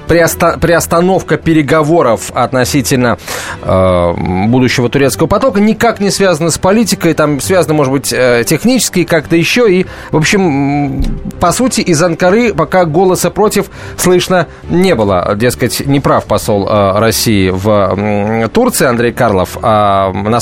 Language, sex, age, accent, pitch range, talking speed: Russian, male, 30-49, native, 130-190 Hz, 125 wpm